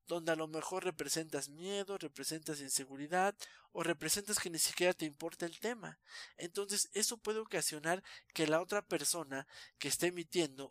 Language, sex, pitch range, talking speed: Spanish, male, 140-180 Hz, 155 wpm